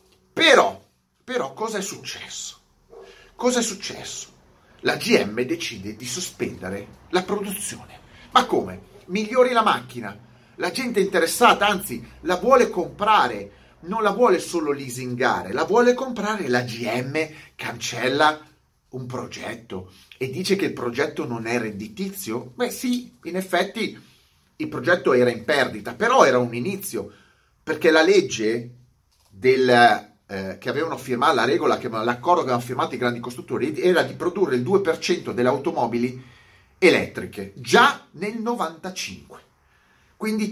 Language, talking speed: Italian, 130 wpm